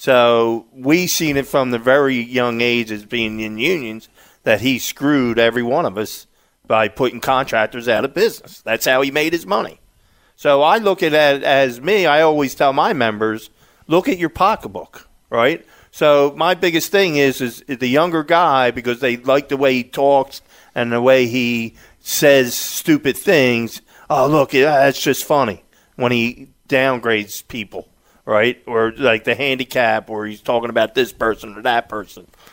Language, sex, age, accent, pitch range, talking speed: English, male, 40-59, American, 125-185 Hz, 175 wpm